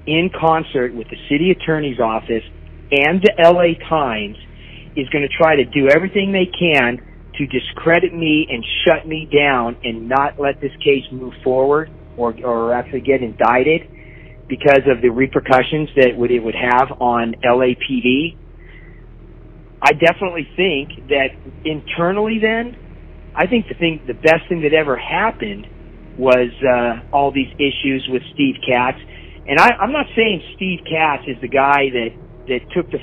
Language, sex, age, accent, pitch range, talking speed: English, male, 40-59, American, 125-160 Hz, 155 wpm